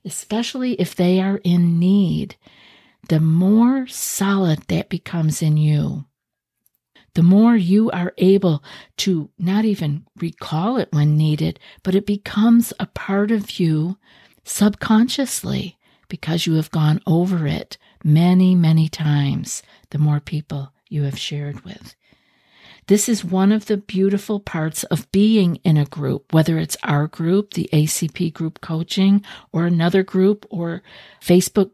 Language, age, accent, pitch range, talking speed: English, 50-69, American, 160-200 Hz, 140 wpm